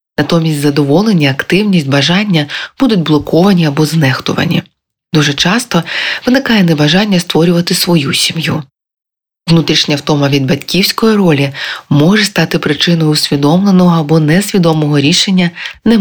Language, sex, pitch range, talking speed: Ukrainian, female, 150-180 Hz, 105 wpm